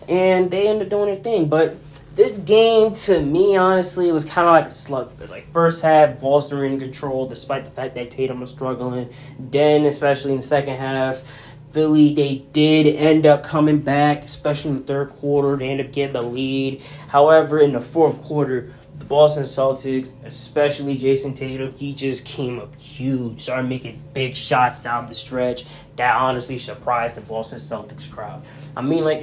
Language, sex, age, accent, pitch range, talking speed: English, male, 10-29, American, 130-155 Hz, 185 wpm